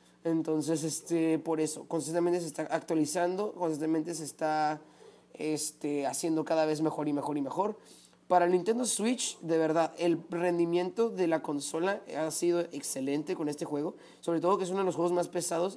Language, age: Spanish, 30-49